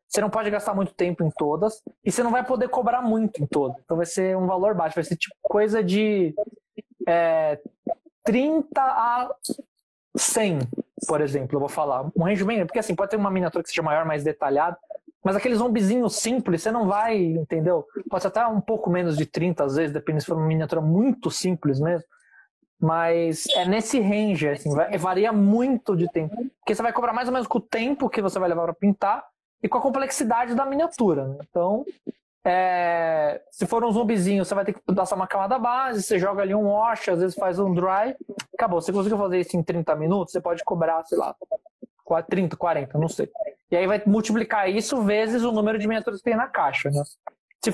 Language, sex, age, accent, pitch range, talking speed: Portuguese, male, 20-39, Brazilian, 170-225 Hz, 210 wpm